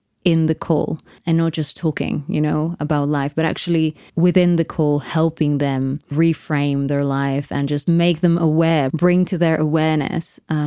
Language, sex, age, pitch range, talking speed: English, female, 20-39, 155-180 Hz, 175 wpm